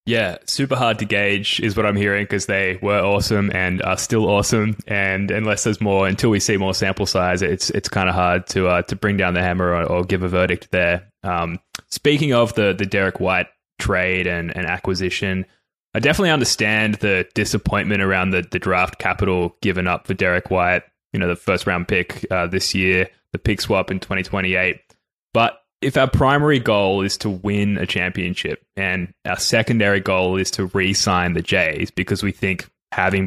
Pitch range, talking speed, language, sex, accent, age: 90-100 Hz, 195 wpm, English, male, Australian, 20-39